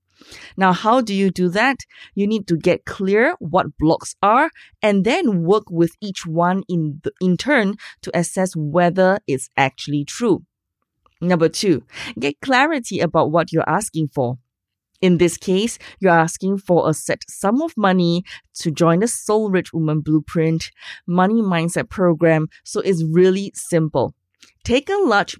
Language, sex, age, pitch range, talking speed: English, female, 20-39, 160-205 Hz, 155 wpm